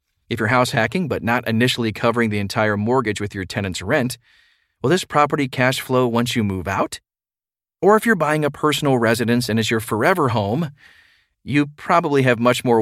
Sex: male